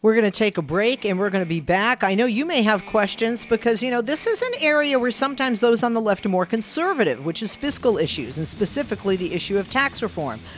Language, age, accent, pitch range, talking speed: English, 50-69, American, 180-240 Hz, 255 wpm